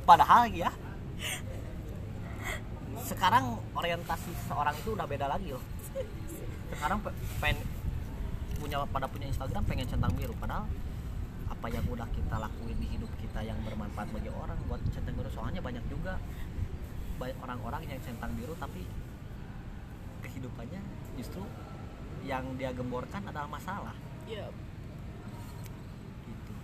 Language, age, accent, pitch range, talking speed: Indonesian, 20-39, native, 100-130 Hz, 115 wpm